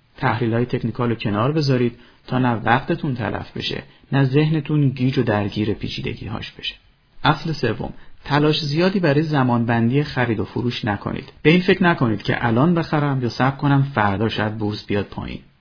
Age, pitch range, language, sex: 30-49, 115-150 Hz, Persian, male